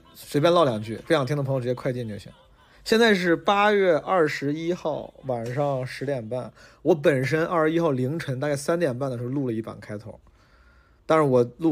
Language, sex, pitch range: Chinese, male, 120-145 Hz